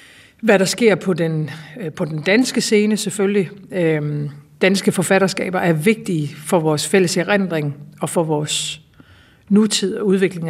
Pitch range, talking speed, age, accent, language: 165-200 Hz, 135 wpm, 60-79, native, Danish